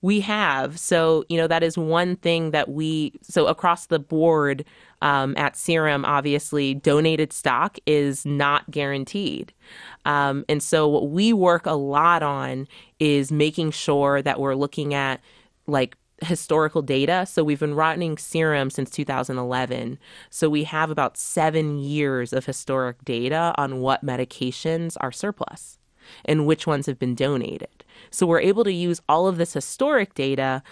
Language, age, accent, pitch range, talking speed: English, 20-39, American, 140-170 Hz, 155 wpm